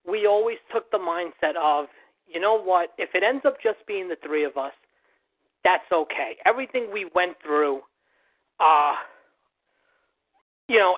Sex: male